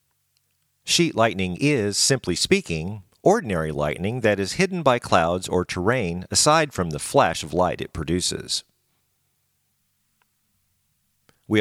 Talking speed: 120 wpm